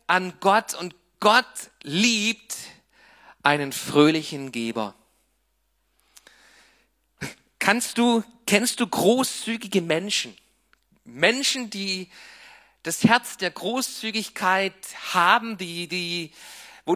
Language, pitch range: German, 170-220 Hz